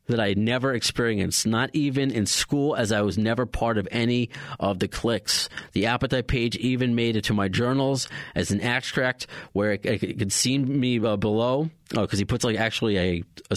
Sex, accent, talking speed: male, American, 205 wpm